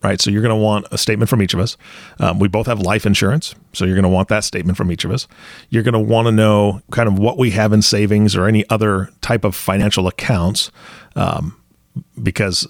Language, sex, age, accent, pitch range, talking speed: English, male, 40-59, American, 95-110 Hz, 240 wpm